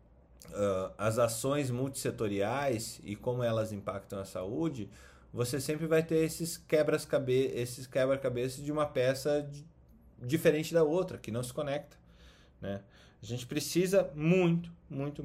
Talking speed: 140 wpm